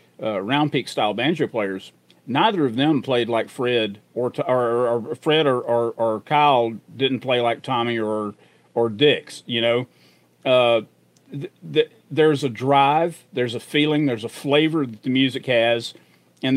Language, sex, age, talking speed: English, male, 40-59, 170 wpm